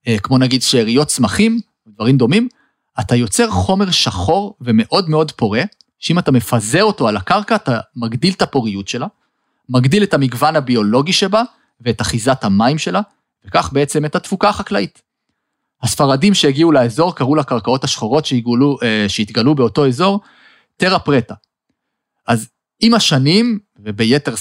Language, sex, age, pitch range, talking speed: Hebrew, male, 30-49, 125-195 Hz, 130 wpm